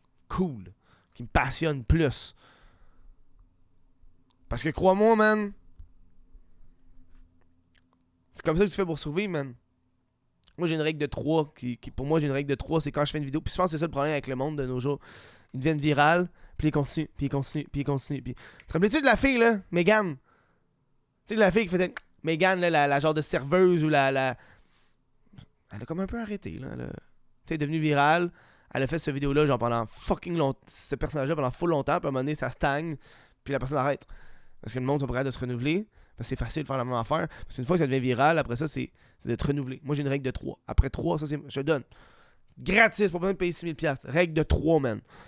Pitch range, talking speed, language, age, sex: 125-170 Hz, 245 wpm, French, 20-39, male